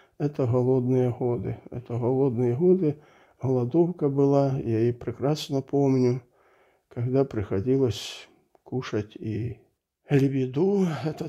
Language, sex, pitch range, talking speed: Russian, male, 125-155 Hz, 95 wpm